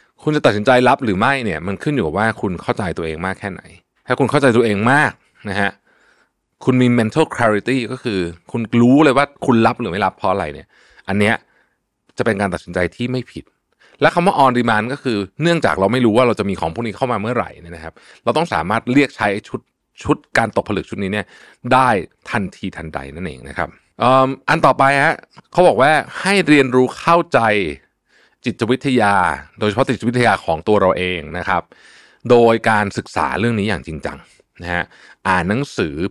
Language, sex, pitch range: Thai, male, 90-125 Hz